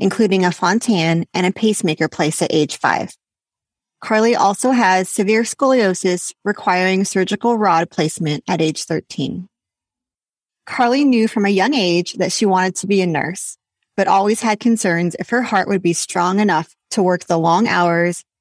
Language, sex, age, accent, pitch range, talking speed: English, female, 30-49, American, 175-220 Hz, 165 wpm